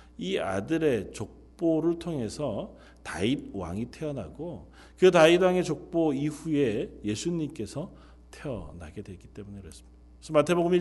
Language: Korean